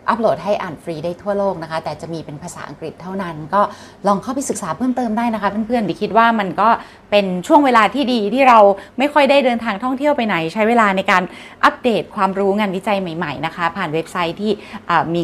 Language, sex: Thai, female